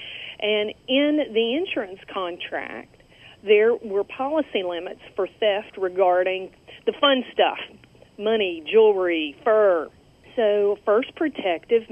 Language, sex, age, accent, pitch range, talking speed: English, female, 40-59, American, 190-250 Hz, 105 wpm